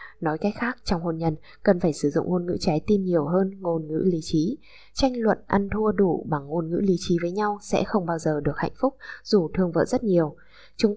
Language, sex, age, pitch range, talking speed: Vietnamese, female, 10-29, 165-210 Hz, 245 wpm